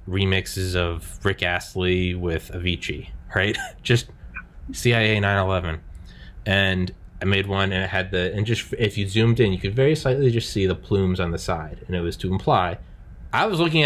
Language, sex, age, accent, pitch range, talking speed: English, male, 20-39, American, 90-110 Hz, 190 wpm